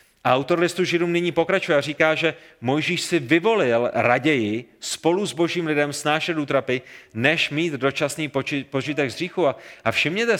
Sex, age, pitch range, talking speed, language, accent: male, 30-49, 130-160 Hz, 160 wpm, Czech, native